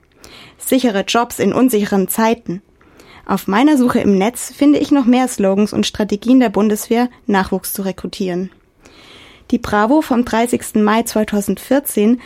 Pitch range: 205-250 Hz